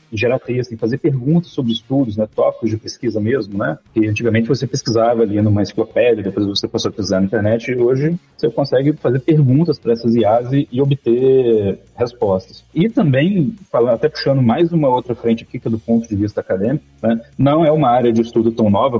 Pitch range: 105-135 Hz